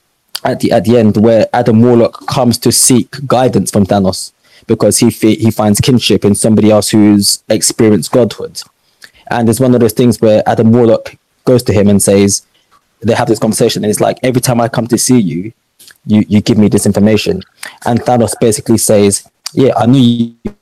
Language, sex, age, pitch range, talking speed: English, male, 20-39, 105-120 Hz, 200 wpm